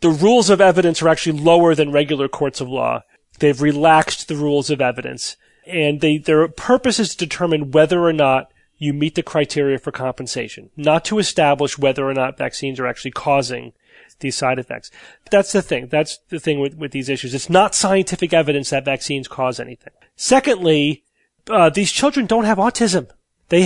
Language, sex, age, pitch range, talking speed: English, male, 30-49, 140-185 Hz, 185 wpm